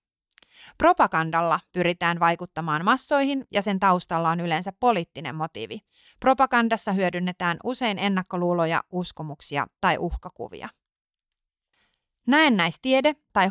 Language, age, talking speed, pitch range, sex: Finnish, 30-49, 90 wpm, 170-225 Hz, female